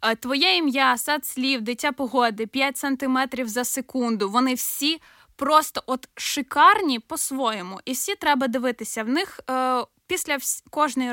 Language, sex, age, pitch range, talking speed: Ukrainian, female, 10-29, 245-295 Hz, 130 wpm